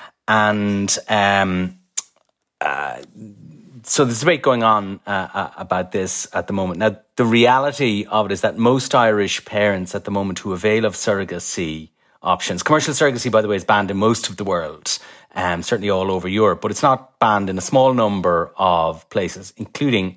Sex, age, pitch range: male, 30-49, 95-115 Hz